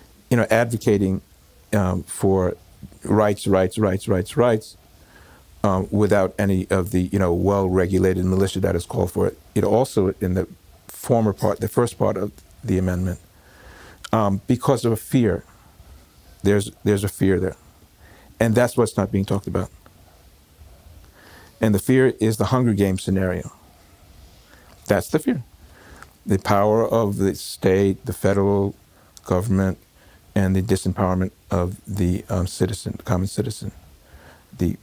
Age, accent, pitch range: 50-69, American, 90-110 Hz